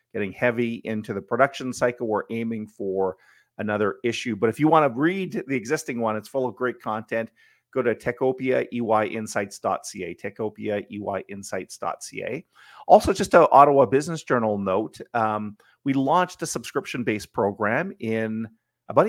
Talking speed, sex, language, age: 140 wpm, male, English, 40-59